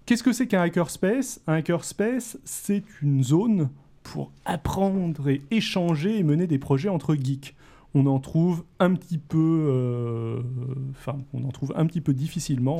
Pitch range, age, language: 130-180 Hz, 30-49, French